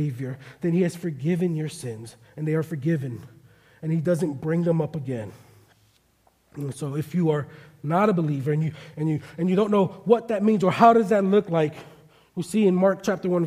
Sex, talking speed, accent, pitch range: male, 215 wpm, American, 165-230 Hz